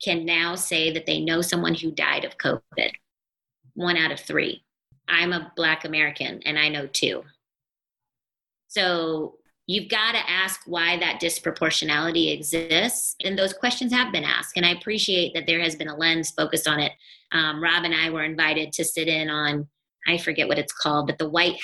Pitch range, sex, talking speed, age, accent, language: 155-175 Hz, female, 190 wpm, 30-49, American, English